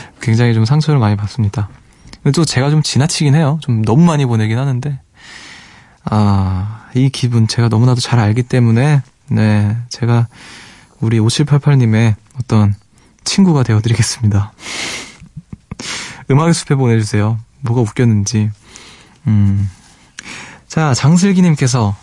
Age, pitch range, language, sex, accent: 20-39, 115-150 Hz, Korean, male, native